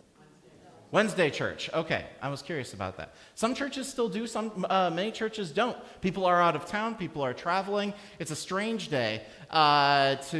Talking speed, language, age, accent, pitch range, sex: 180 wpm, English, 40-59, American, 145-220 Hz, male